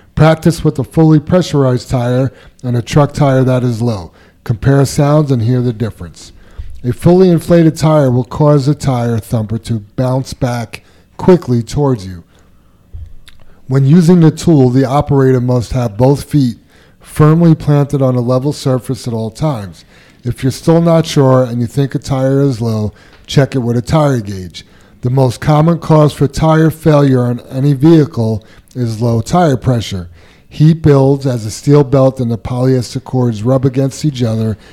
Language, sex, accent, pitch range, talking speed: English, male, American, 115-145 Hz, 170 wpm